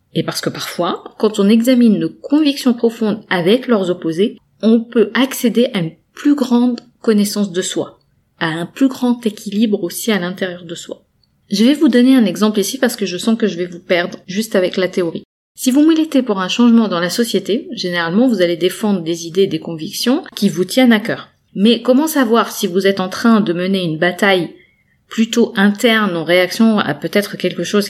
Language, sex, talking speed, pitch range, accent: French, female, 205 wpm, 185-240 Hz, French